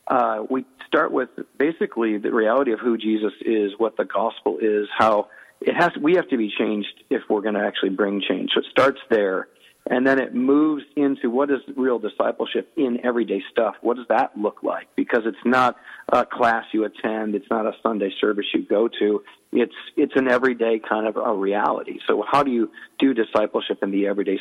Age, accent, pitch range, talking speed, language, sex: 40-59, American, 105-130 Hz, 205 wpm, English, male